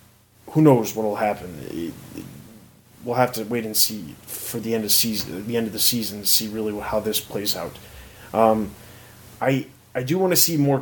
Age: 30-49